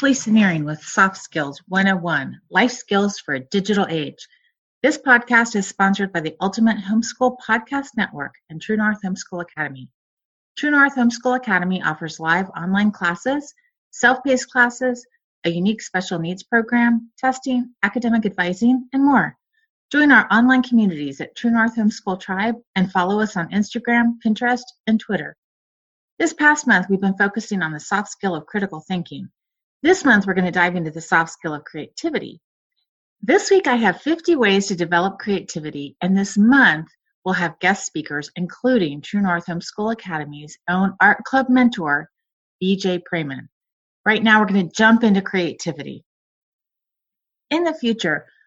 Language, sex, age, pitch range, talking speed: English, female, 30-49, 180-245 Hz, 155 wpm